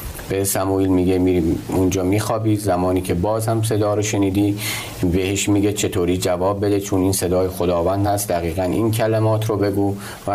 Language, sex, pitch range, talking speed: Persian, male, 95-105 Hz, 170 wpm